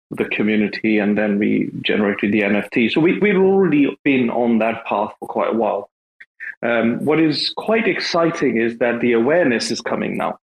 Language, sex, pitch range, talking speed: English, male, 115-140 Hz, 185 wpm